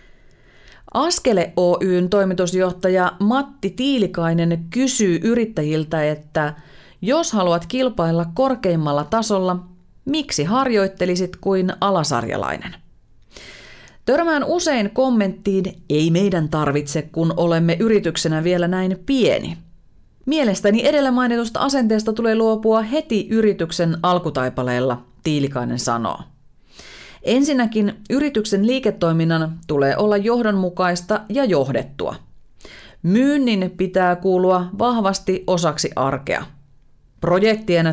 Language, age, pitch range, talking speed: Finnish, 30-49, 165-225 Hz, 85 wpm